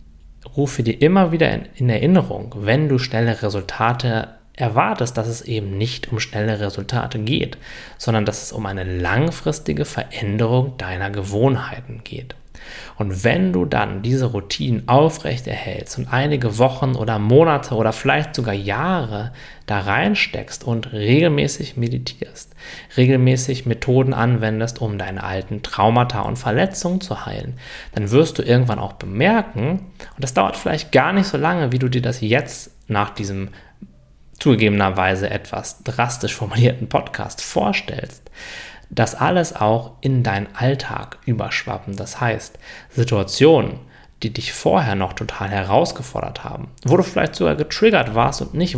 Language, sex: German, male